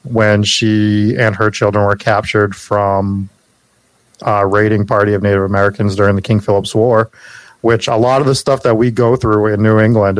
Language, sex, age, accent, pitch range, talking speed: English, male, 30-49, American, 100-115 Hz, 190 wpm